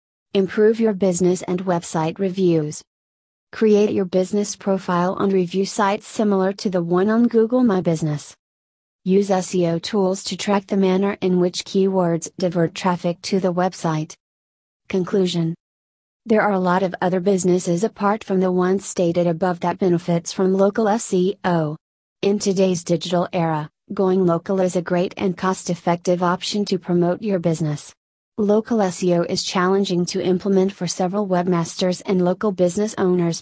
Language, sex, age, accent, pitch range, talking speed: English, female, 30-49, American, 175-195 Hz, 150 wpm